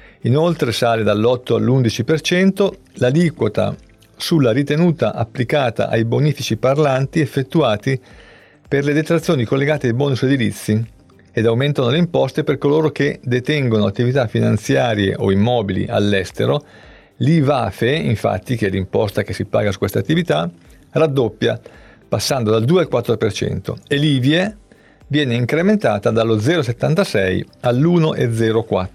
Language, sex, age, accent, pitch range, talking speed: Italian, male, 50-69, native, 110-150 Hz, 115 wpm